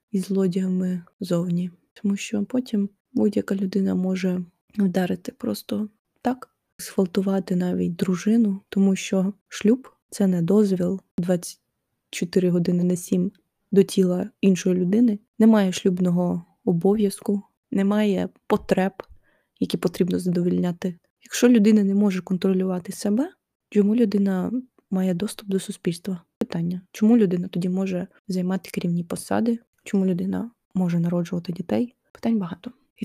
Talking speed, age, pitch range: 120 wpm, 20-39, 185-215 Hz